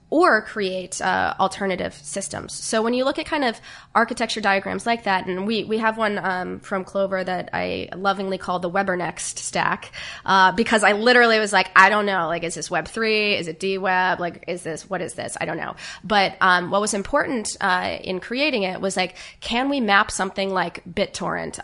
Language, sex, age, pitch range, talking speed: English, female, 20-39, 180-215 Hz, 200 wpm